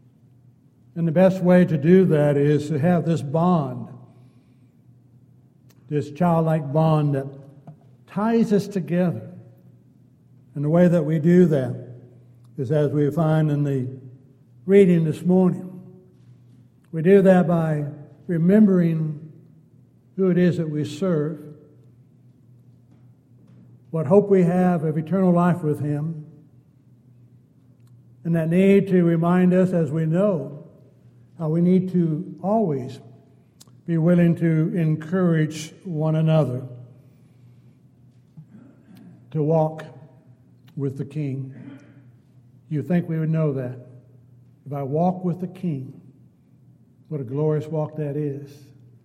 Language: English